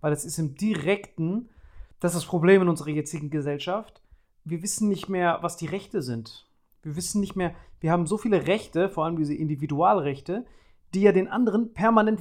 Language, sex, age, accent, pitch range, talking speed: German, male, 30-49, German, 160-200 Hz, 190 wpm